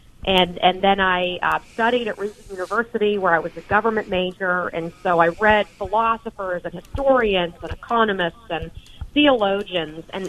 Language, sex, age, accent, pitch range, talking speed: English, female, 30-49, American, 180-220 Hz, 155 wpm